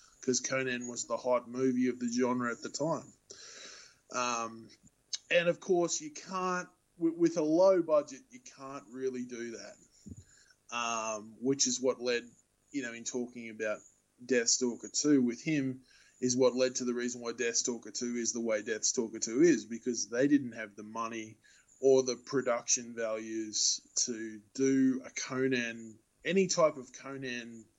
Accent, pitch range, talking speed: Australian, 120-145 Hz, 160 wpm